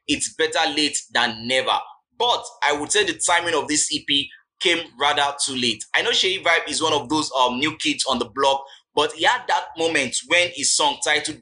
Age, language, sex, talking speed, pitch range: 20-39, English, male, 215 wpm, 140-180 Hz